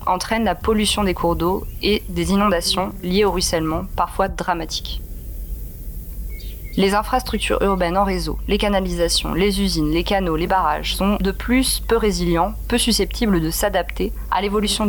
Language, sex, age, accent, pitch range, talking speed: French, female, 30-49, French, 170-205 Hz, 155 wpm